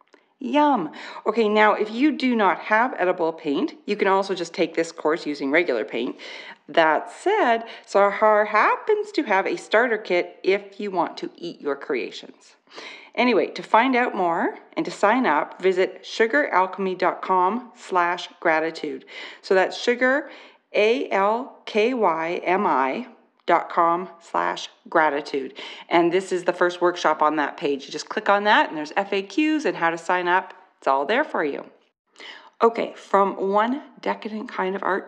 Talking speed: 155 wpm